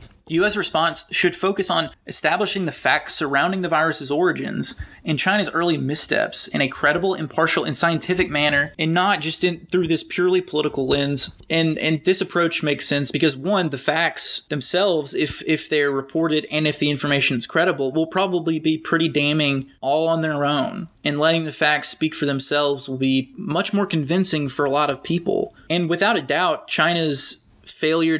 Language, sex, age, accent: English, male, 20-39, American